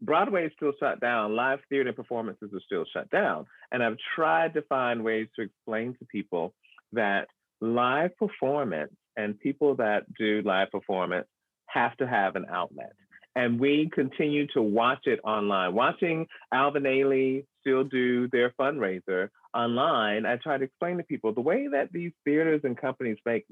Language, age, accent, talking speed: English, 40-59, American, 165 wpm